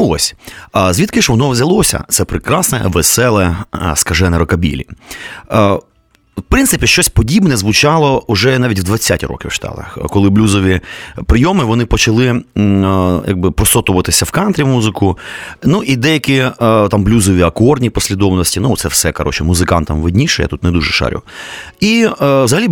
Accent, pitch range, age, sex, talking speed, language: native, 95-125 Hz, 30-49, male, 135 wpm, Ukrainian